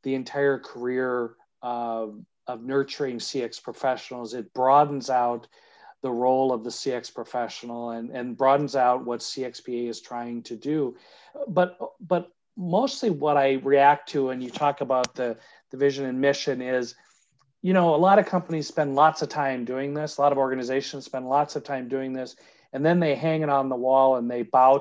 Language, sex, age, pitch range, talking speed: English, male, 40-59, 125-150 Hz, 185 wpm